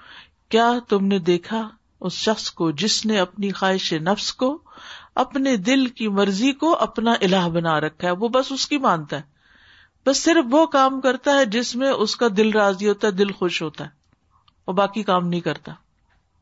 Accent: Indian